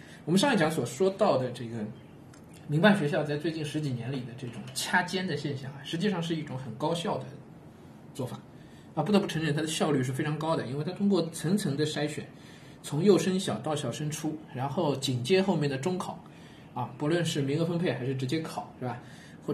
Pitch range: 130-165 Hz